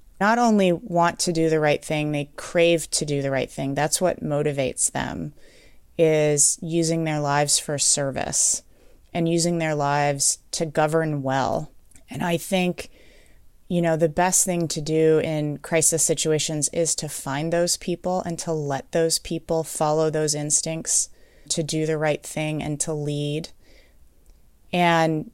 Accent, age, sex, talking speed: American, 20-39, female, 160 wpm